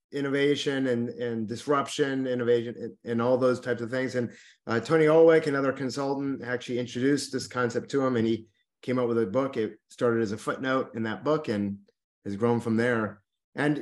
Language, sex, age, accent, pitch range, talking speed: English, male, 30-49, American, 120-155 Hz, 195 wpm